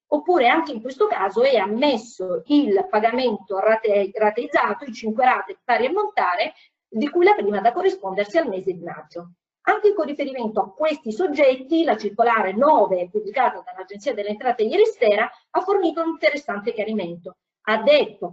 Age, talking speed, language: 40-59, 155 wpm, Italian